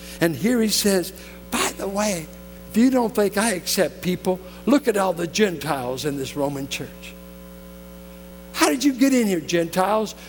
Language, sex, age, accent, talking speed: English, male, 60-79, American, 175 wpm